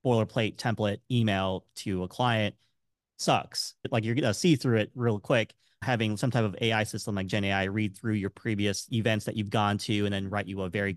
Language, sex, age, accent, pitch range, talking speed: English, male, 30-49, American, 100-120 Hz, 215 wpm